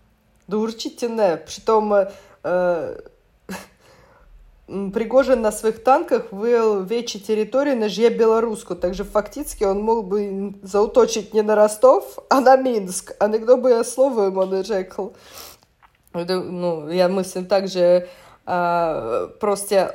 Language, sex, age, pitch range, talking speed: Czech, female, 20-39, 180-215 Hz, 115 wpm